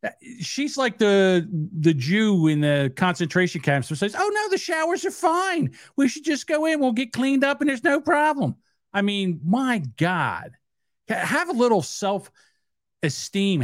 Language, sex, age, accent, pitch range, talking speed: English, male, 50-69, American, 160-245 Hz, 170 wpm